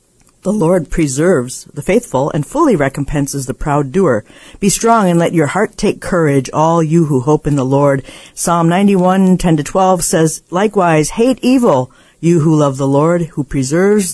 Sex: female